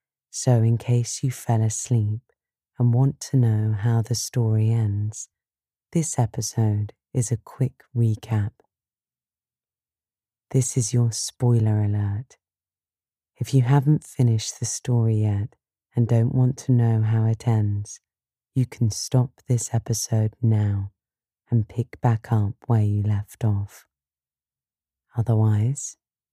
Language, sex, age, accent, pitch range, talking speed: English, female, 30-49, British, 105-125 Hz, 125 wpm